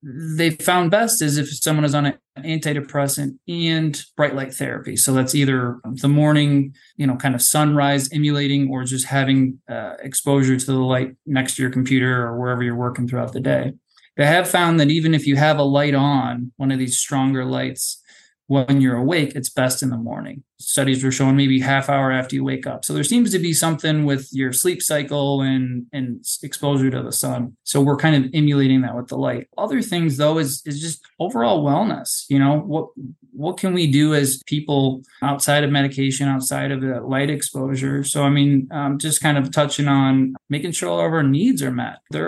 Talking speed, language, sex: 205 wpm, English, male